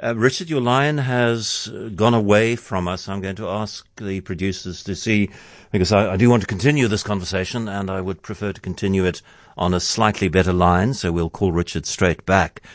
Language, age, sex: English, 60-79, male